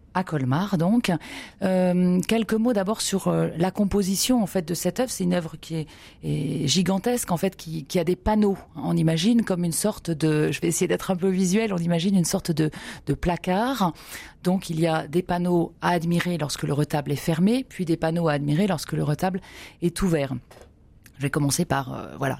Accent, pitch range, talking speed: French, 145-185 Hz, 210 wpm